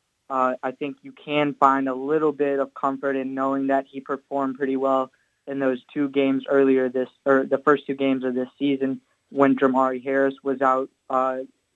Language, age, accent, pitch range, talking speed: English, 20-39, American, 130-145 Hz, 195 wpm